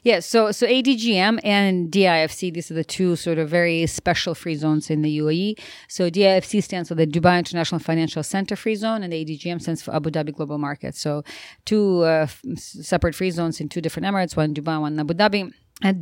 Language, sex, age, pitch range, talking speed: English, female, 30-49, 160-185 Hz, 215 wpm